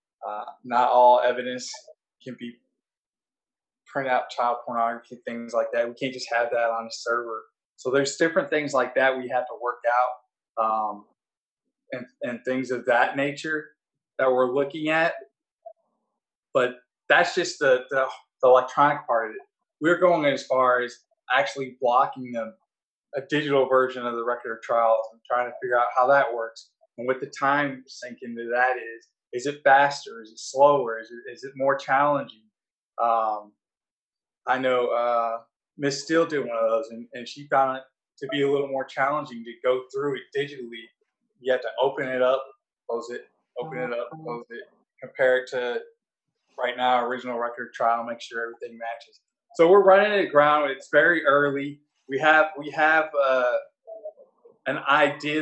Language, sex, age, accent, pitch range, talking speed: English, male, 20-39, American, 120-150 Hz, 175 wpm